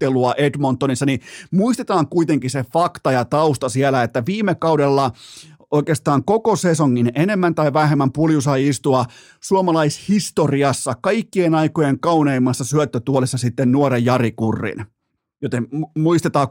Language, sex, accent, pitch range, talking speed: Finnish, male, native, 125-160 Hz, 115 wpm